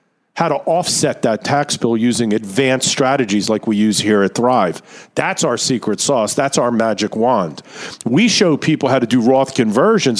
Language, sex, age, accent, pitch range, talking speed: English, male, 50-69, American, 120-180 Hz, 180 wpm